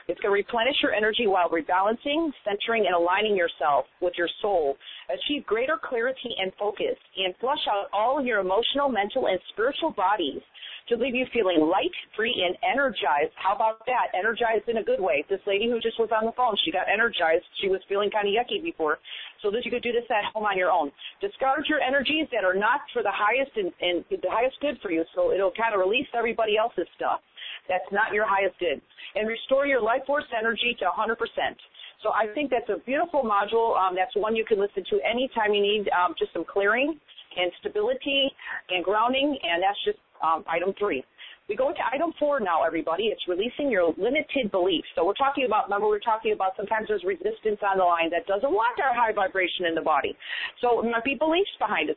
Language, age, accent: English, 40-59, American